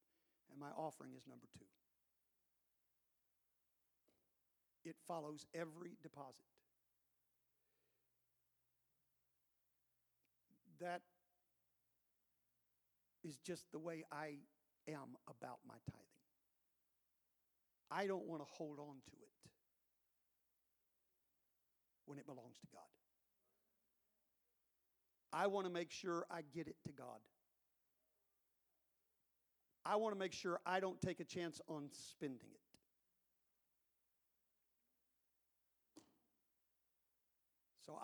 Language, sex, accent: English, male, American